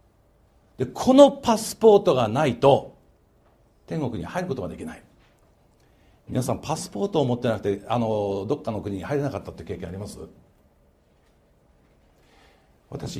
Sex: male